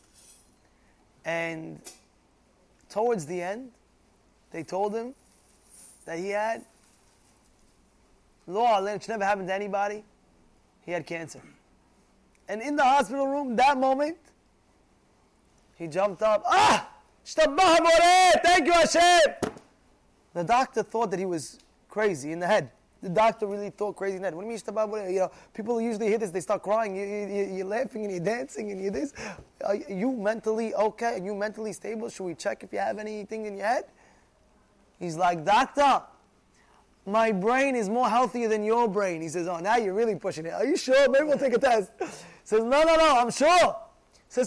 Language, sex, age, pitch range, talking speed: English, male, 20-39, 185-245 Hz, 165 wpm